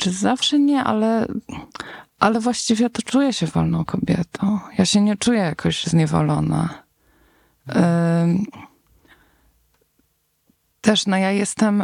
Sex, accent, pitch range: female, native, 150-185 Hz